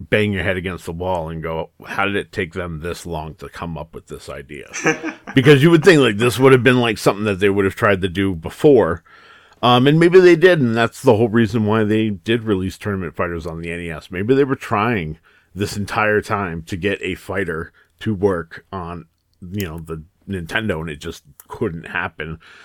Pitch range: 85-105 Hz